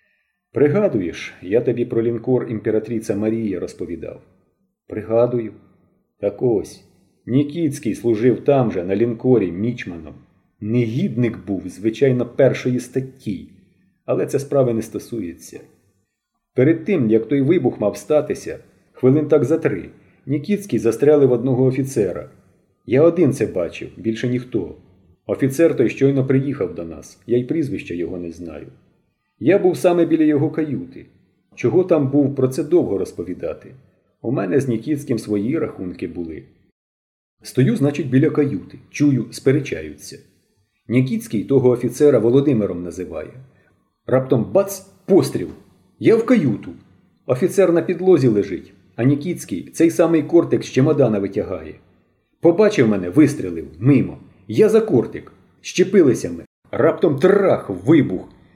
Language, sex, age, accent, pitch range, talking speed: Ukrainian, male, 40-59, native, 110-150 Hz, 125 wpm